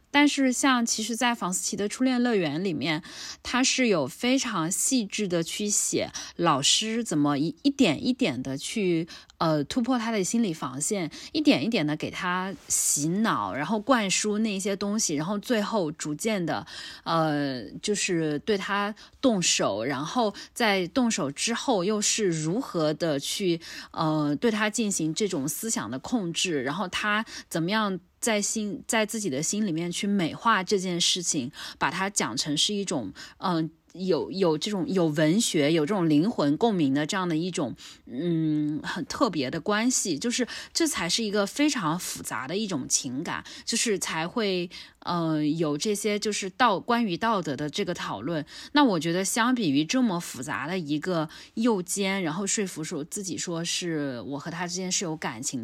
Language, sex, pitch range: Chinese, female, 165-225 Hz